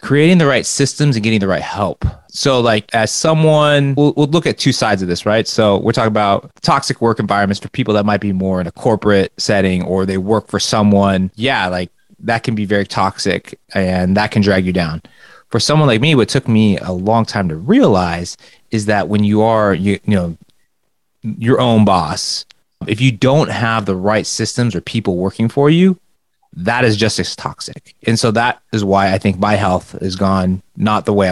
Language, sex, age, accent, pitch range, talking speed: English, male, 30-49, American, 100-130 Hz, 215 wpm